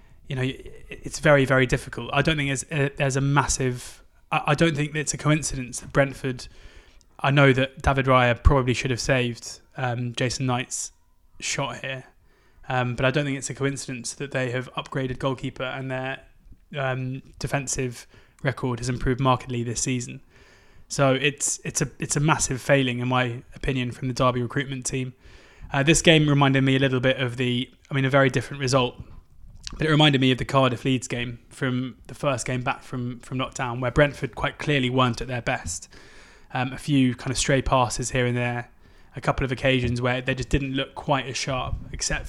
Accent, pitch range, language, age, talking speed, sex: British, 125-140 Hz, English, 20-39, 190 wpm, male